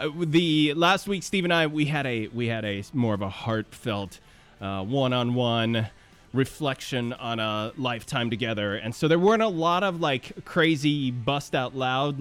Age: 20-39